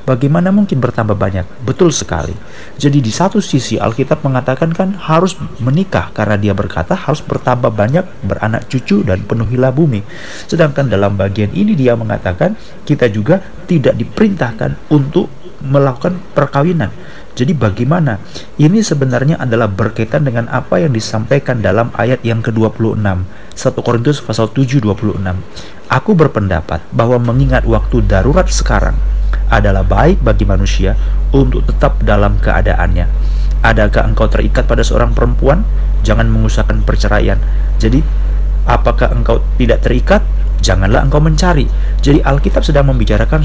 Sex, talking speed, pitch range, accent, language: male, 130 wpm, 105-145 Hz, native, Indonesian